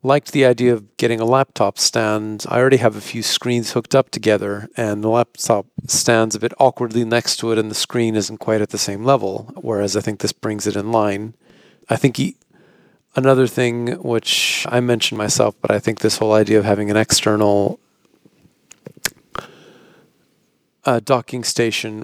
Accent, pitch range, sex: American, 105-120 Hz, male